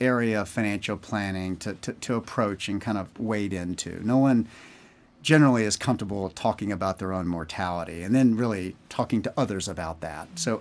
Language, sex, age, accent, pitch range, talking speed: English, male, 40-59, American, 95-125 Hz, 180 wpm